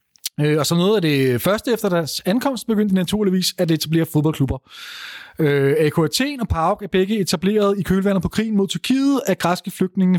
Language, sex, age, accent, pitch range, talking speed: Danish, male, 30-49, native, 155-200 Hz, 185 wpm